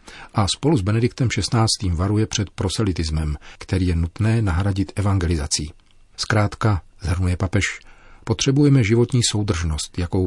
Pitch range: 90-105 Hz